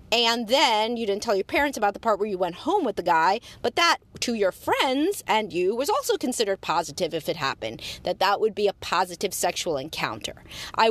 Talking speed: 220 wpm